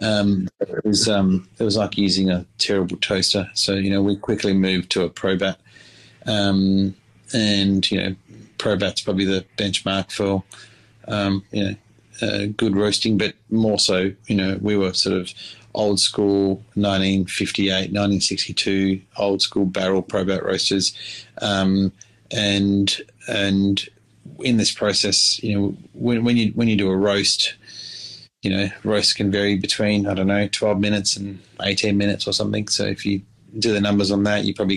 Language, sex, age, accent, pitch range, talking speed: English, male, 30-49, Australian, 100-105 Hz, 165 wpm